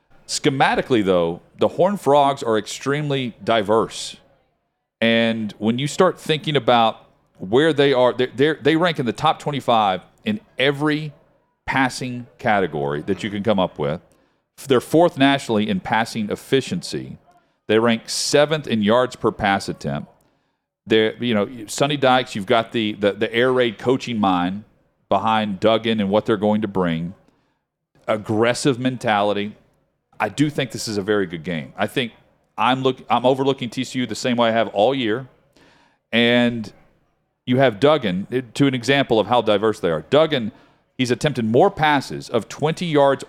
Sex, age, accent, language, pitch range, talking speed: male, 40-59, American, English, 110-140 Hz, 160 wpm